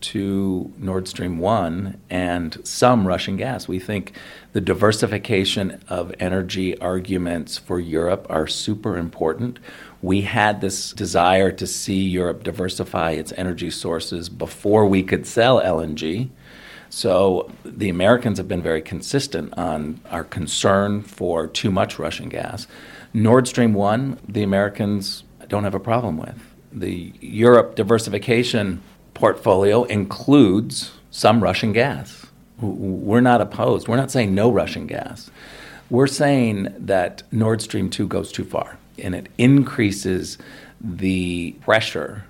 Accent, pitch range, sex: American, 90-110 Hz, male